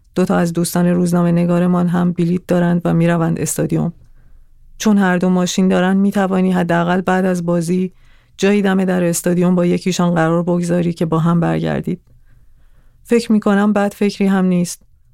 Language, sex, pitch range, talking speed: Persian, female, 170-195 Hz, 160 wpm